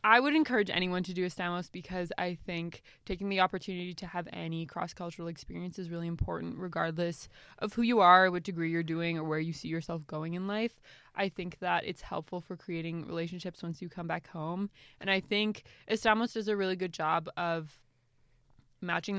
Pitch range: 165-195 Hz